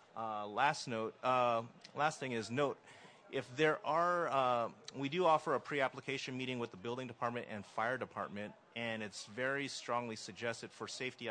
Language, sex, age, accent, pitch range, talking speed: English, male, 30-49, American, 110-130 Hz, 170 wpm